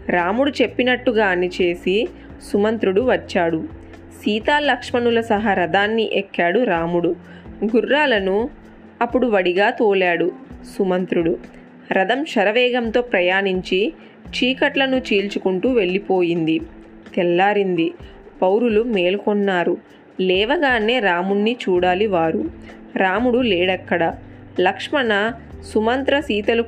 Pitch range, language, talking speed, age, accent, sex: 180-230 Hz, Telugu, 75 wpm, 20-39, native, female